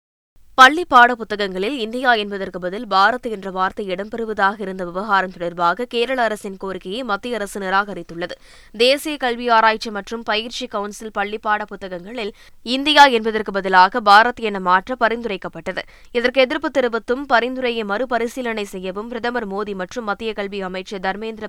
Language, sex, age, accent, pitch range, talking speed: Tamil, female, 20-39, native, 195-245 Hz, 130 wpm